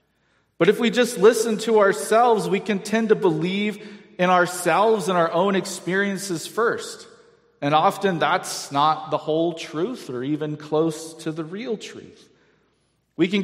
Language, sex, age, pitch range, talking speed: English, male, 40-59, 155-200 Hz, 155 wpm